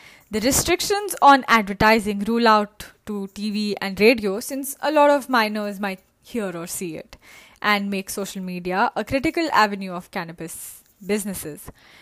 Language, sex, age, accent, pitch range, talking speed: English, female, 20-39, Indian, 195-265 Hz, 150 wpm